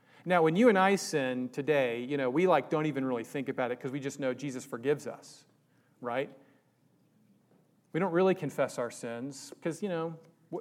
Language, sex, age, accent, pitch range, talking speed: English, male, 40-59, American, 140-185 Hz, 190 wpm